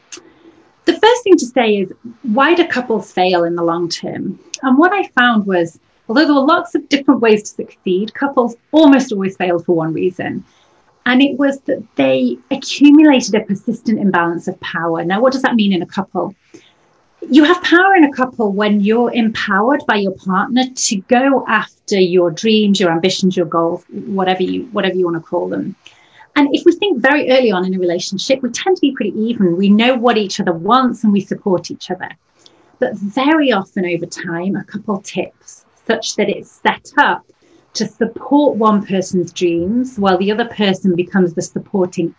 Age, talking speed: 30-49, 195 wpm